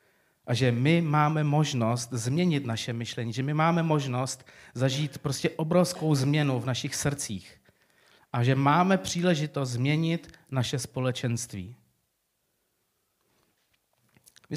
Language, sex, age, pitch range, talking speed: Czech, male, 40-59, 115-145 Hz, 110 wpm